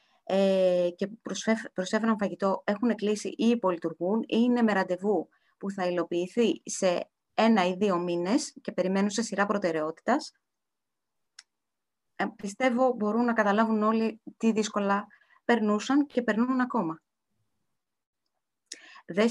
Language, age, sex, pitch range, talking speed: Greek, 20-39, female, 180-230 Hz, 110 wpm